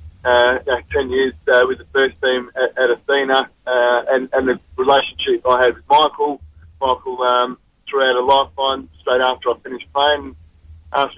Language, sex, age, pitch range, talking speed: English, male, 20-39, 125-150 Hz, 185 wpm